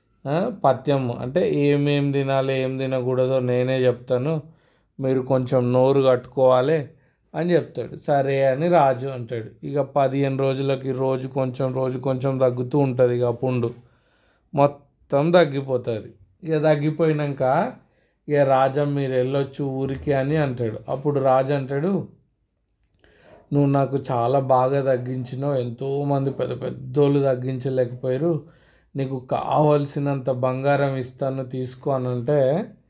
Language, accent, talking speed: Telugu, native, 105 wpm